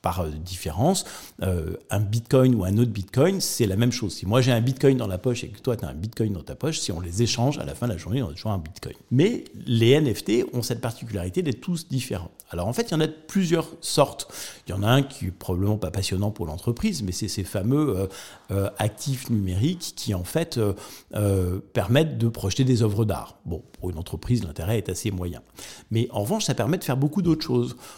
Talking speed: 235 wpm